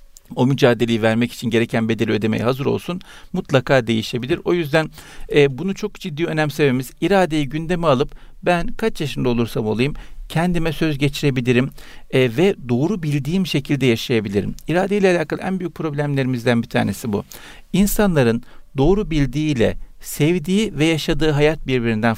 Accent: native